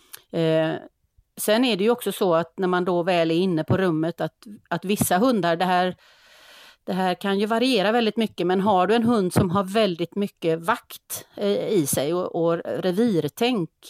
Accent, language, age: native, Swedish, 30-49